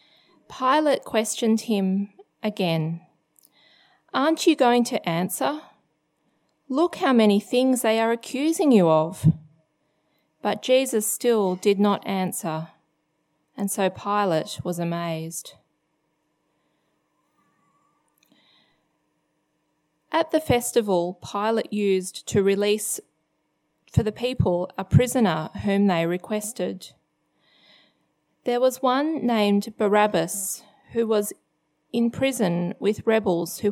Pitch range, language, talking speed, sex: 170-230 Hz, English, 100 wpm, female